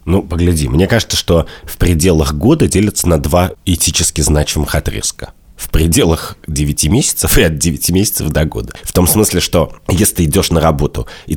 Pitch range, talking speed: 75-95 Hz, 180 wpm